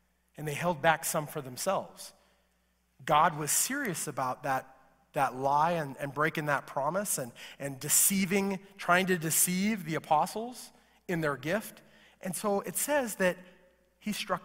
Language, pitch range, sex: English, 160-210 Hz, male